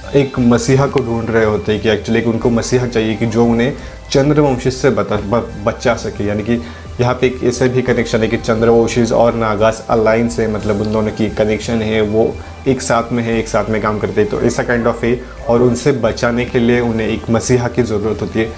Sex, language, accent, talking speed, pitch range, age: male, English, Indian, 205 wpm, 110-125 Hz, 30-49